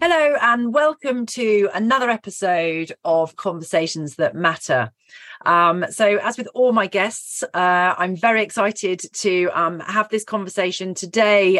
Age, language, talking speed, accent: 40-59, English, 140 wpm, British